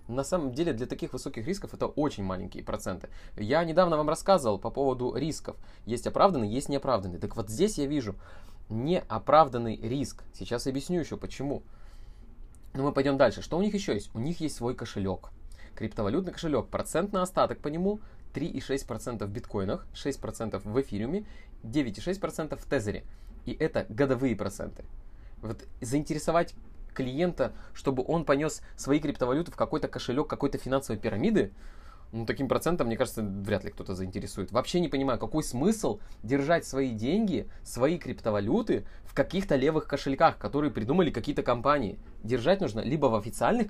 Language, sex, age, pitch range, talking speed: Russian, male, 20-39, 105-145 Hz, 155 wpm